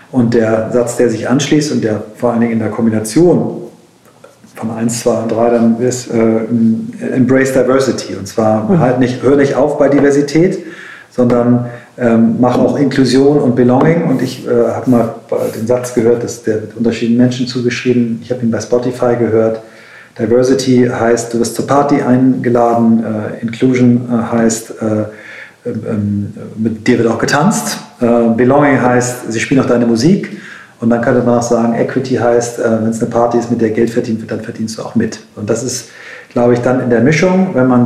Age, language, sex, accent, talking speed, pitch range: 40-59, German, male, German, 185 wpm, 110-125 Hz